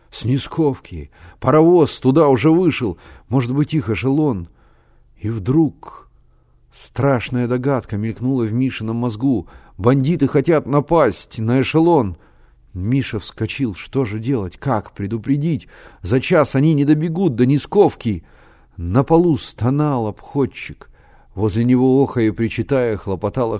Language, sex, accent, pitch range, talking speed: Russian, male, native, 100-145 Hz, 120 wpm